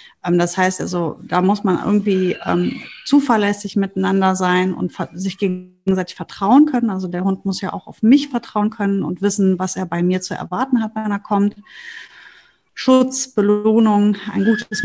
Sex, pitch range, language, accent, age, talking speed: female, 180-220 Hz, German, German, 30-49, 170 wpm